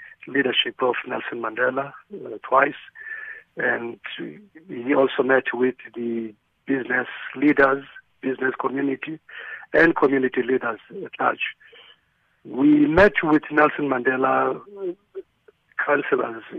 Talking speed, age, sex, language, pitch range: 100 wpm, 50-69, male, English, 130-205 Hz